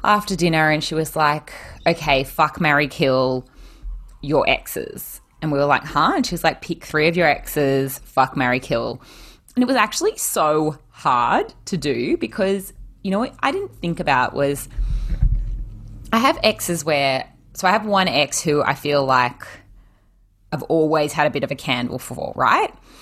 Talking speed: 180 wpm